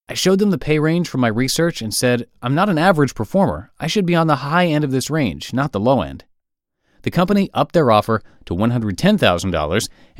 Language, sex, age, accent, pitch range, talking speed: English, male, 30-49, American, 110-165 Hz, 220 wpm